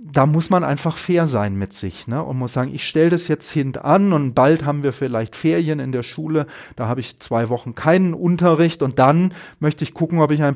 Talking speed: 235 wpm